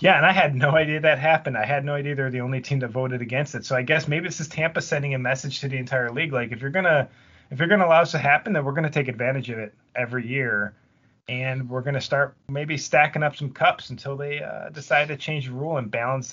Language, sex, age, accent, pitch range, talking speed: English, male, 30-49, American, 115-140 Hz, 270 wpm